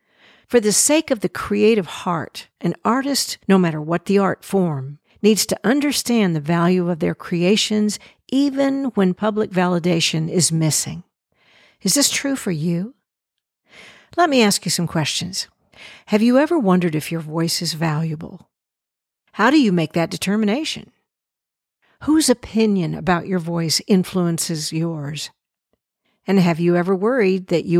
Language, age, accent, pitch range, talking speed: English, 50-69, American, 170-215 Hz, 150 wpm